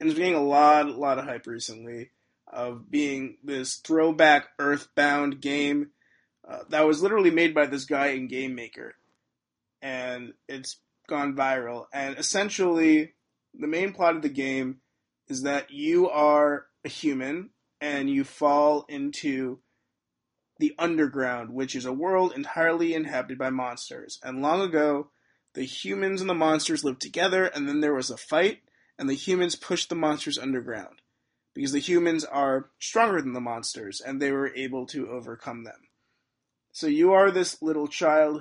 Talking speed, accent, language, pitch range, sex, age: 160 wpm, American, English, 130-165 Hz, male, 30-49